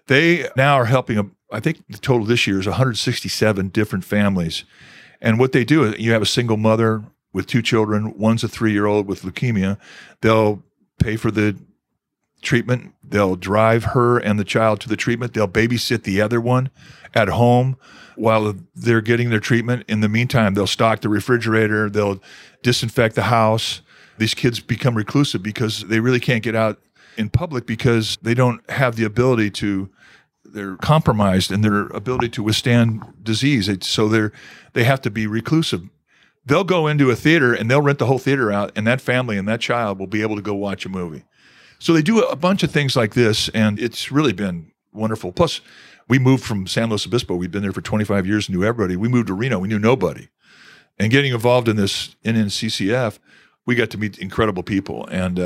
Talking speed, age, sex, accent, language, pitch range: 195 wpm, 40-59, male, American, English, 105-125 Hz